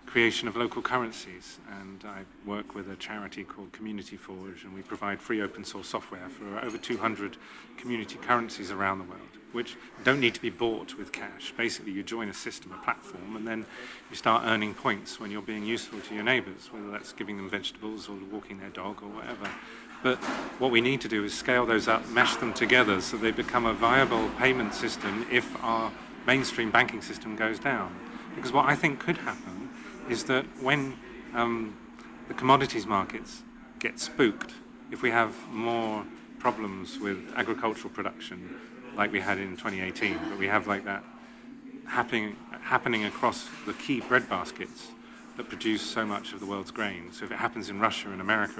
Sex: male